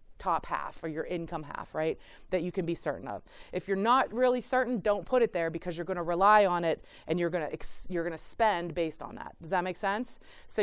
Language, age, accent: English, 30-49, American